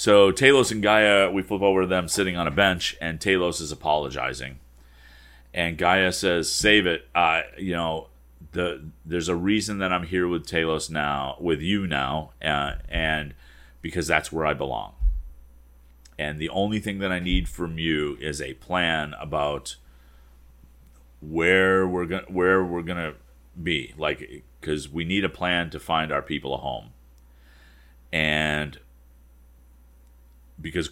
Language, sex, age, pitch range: English, male, 40-59, 65-95 Hz